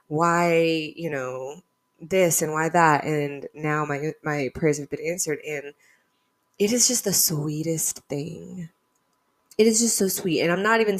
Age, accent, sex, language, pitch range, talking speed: 20-39, American, female, English, 150-185 Hz, 170 wpm